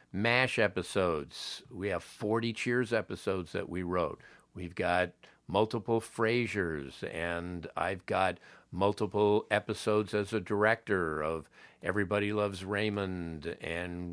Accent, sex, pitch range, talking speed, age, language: American, male, 90-120 Hz, 115 wpm, 50-69, English